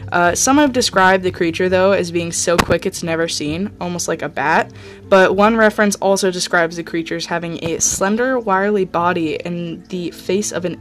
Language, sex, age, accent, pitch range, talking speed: English, female, 10-29, American, 170-195 Hz, 200 wpm